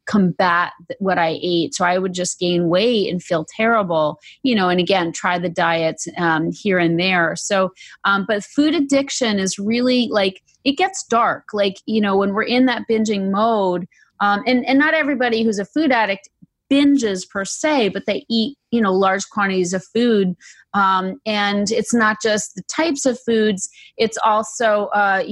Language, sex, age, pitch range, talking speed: English, female, 30-49, 190-235 Hz, 180 wpm